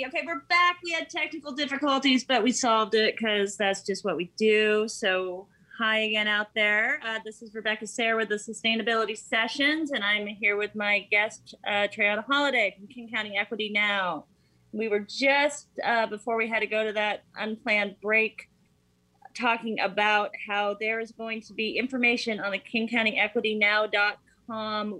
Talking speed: 170 wpm